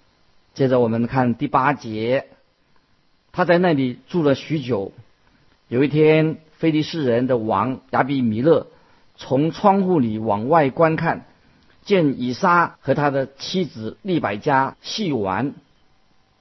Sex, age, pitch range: male, 50-69, 120-160 Hz